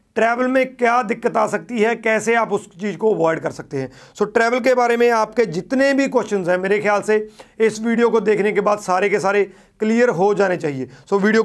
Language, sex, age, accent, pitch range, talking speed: Hindi, male, 40-59, native, 190-225 Hz, 240 wpm